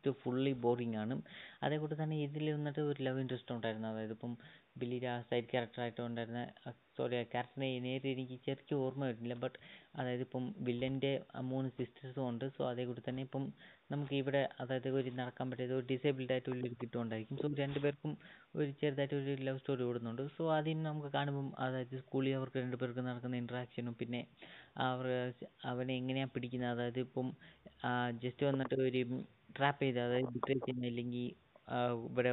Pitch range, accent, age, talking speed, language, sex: 125-150 Hz, native, 20-39, 145 wpm, Malayalam, female